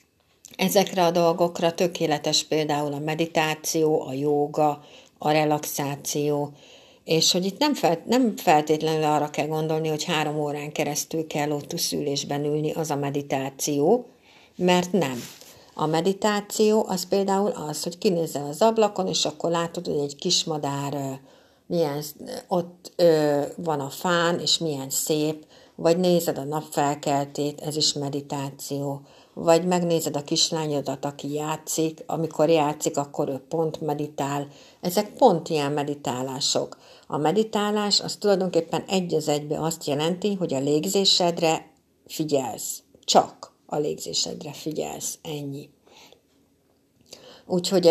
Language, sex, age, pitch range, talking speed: Hungarian, female, 60-79, 145-170 Hz, 120 wpm